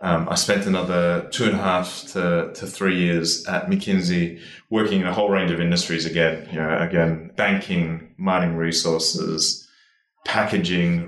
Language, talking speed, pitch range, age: English, 155 wpm, 80-100 Hz, 20-39